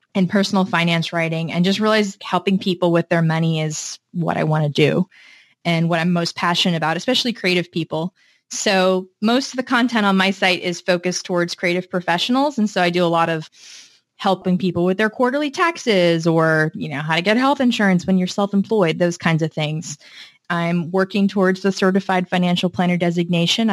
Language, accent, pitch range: English, American, 170-200 Hz